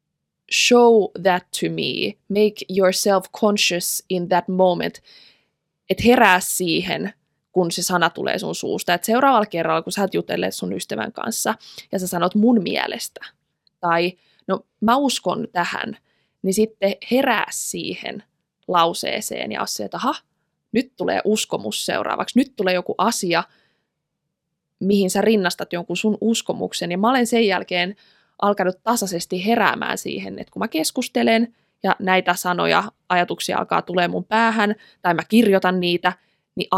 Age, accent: 20-39, native